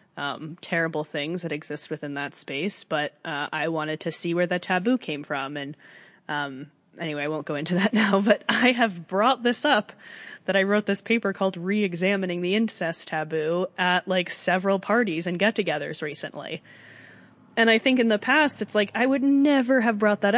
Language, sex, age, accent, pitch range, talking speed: English, female, 20-39, American, 165-225 Hz, 190 wpm